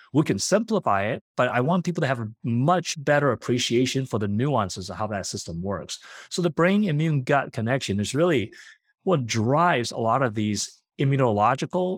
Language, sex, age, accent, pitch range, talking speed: English, male, 30-49, American, 105-150 Hz, 185 wpm